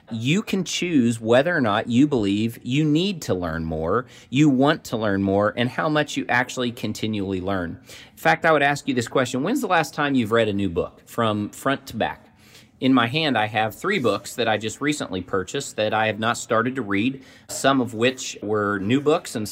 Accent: American